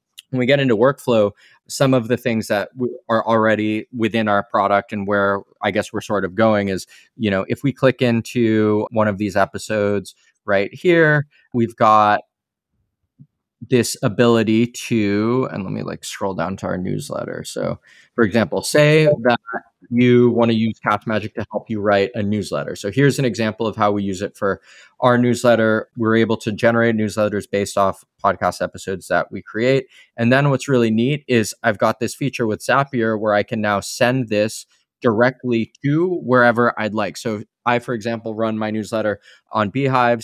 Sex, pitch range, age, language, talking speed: male, 105-125 Hz, 20-39, English, 185 wpm